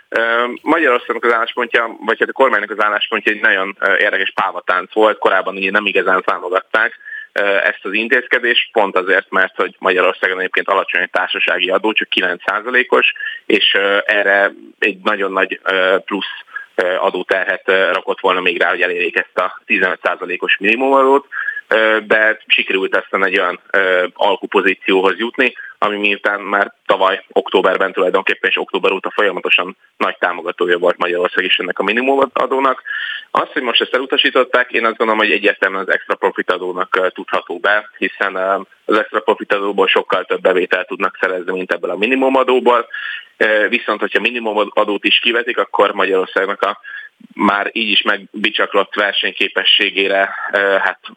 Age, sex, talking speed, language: 30-49, male, 140 wpm, Hungarian